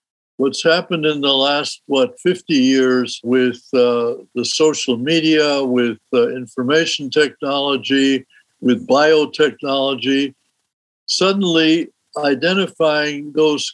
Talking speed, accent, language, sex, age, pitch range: 95 wpm, American, English, male, 60-79, 135-165 Hz